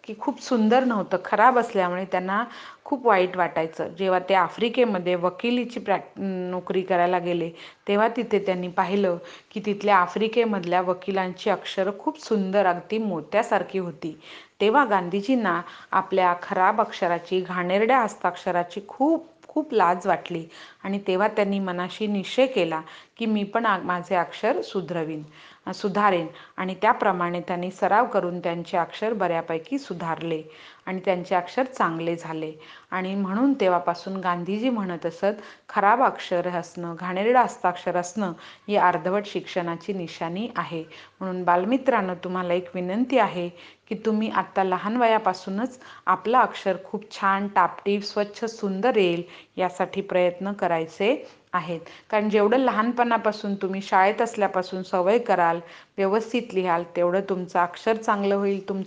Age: 30-49